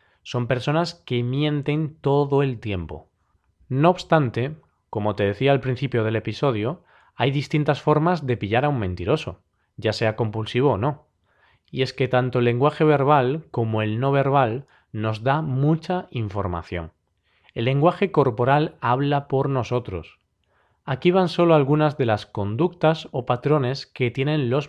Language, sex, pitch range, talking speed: Spanish, male, 115-150 Hz, 150 wpm